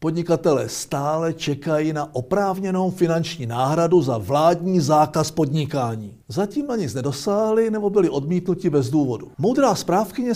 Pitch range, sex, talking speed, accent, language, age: 125-180 Hz, male, 125 wpm, native, Czech, 60-79